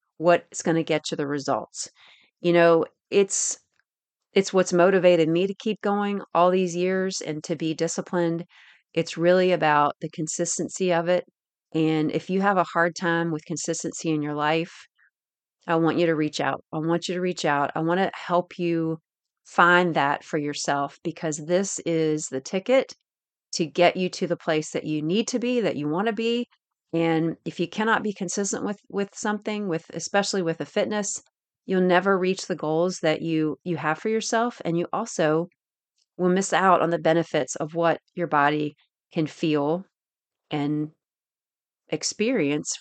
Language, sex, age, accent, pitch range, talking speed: English, female, 40-59, American, 155-190 Hz, 180 wpm